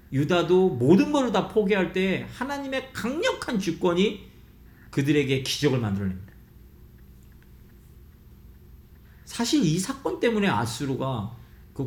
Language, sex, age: Korean, male, 40-59